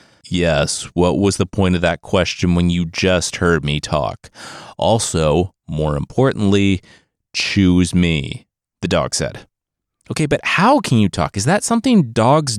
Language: English